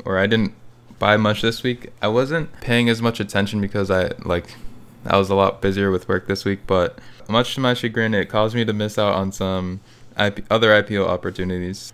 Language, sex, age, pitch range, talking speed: English, male, 20-39, 95-120 Hz, 210 wpm